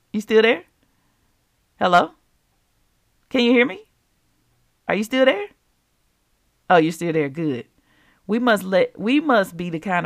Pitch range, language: 165-230 Hz, English